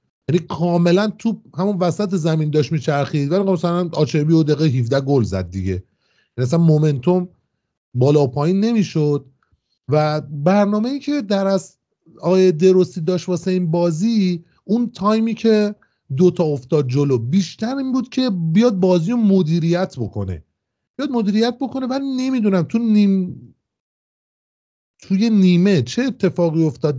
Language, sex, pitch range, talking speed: Persian, male, 140-195 Hz, 135 wpm